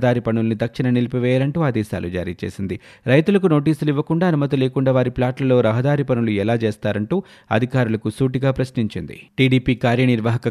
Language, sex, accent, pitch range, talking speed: Telugu, male, native, 110-135 Hz, 130 wpm